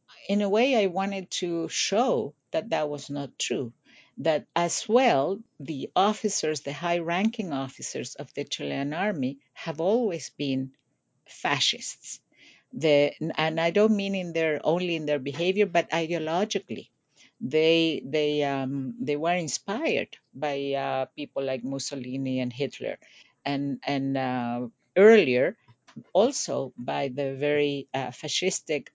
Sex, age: female, 50-69